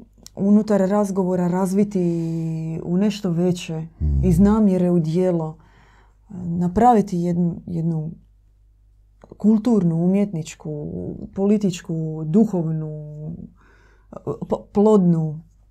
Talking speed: 70 wpm